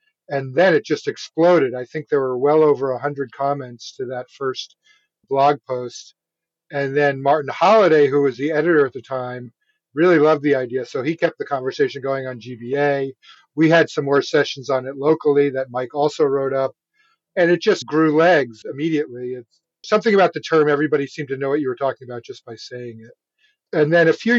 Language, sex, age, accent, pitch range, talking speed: English, male, 50-69, American, 130-160 Hz, 200 wpm